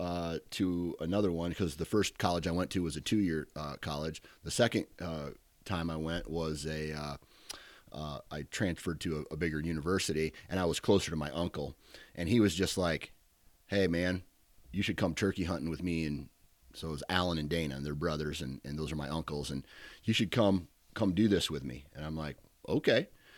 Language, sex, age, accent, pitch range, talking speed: English, male, 30-49, American, 75-90 Hz, 215 wpm